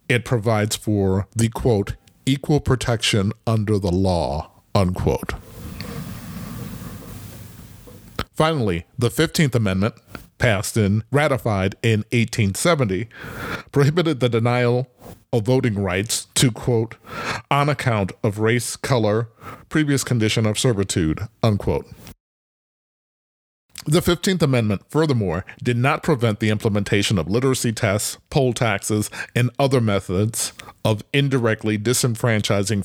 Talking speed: 105 wpm